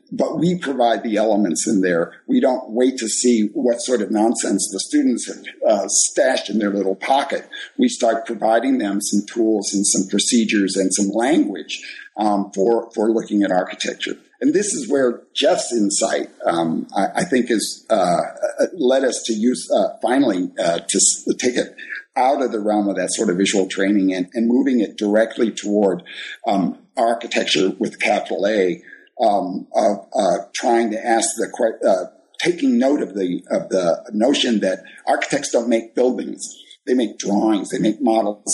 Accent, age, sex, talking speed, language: American, 50-69, male, 175 wpm, English